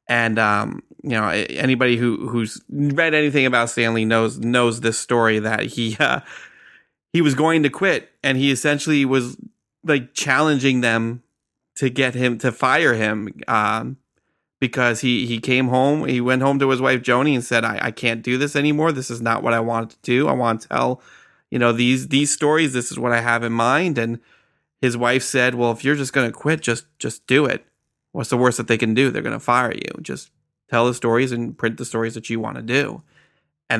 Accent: American